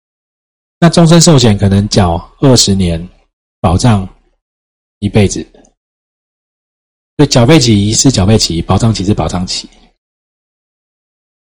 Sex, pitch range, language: male, 90-125 Hz, Chinese